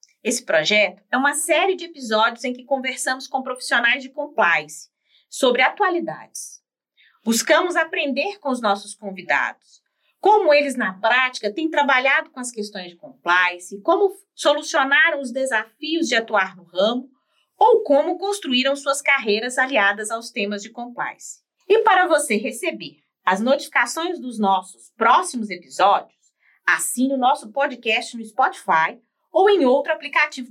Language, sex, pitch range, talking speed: Portuguese, female, 215-290 Hz, 140 wpm